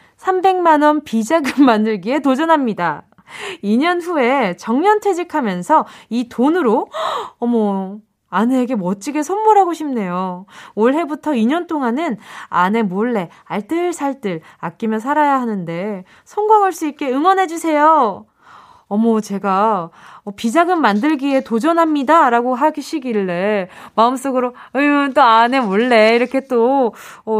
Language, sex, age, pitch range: Korean, female, 20-39, 230-325 Hz